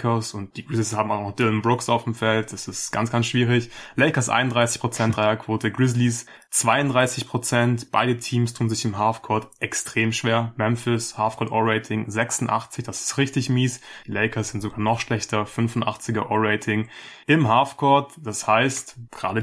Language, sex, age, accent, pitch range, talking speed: German, male, 20-39, German, 115-130 Hz, 155 wpm